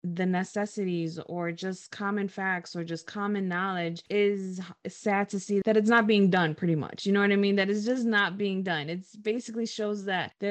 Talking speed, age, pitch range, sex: 210 wpm, 20-39, 175-210 Hz, female